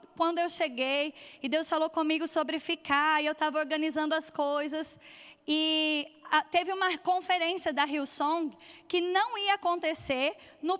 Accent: Brazilian